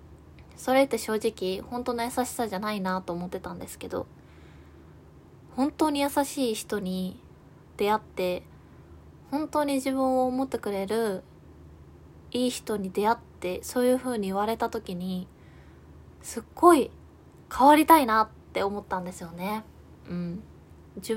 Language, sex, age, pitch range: Japanese, female, 20-39, 175-250 Hz